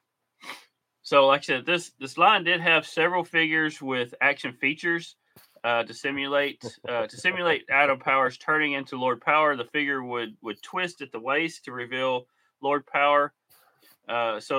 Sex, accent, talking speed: male, American, 165 wpm